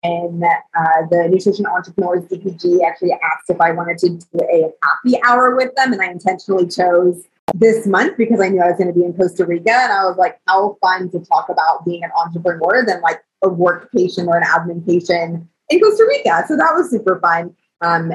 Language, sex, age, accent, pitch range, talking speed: English, female, 20-39, American, 180-265 Hz, 215 wpm